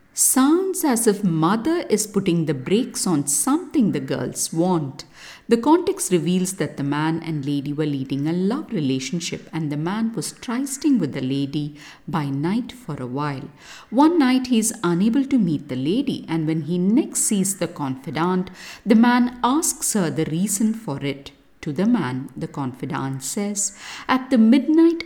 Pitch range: 155-245 Hz